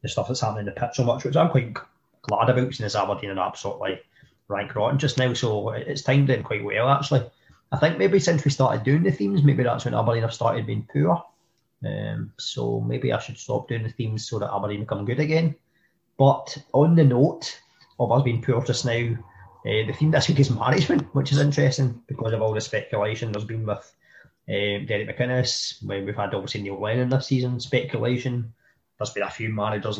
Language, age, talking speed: English, 20-39, 215 wpm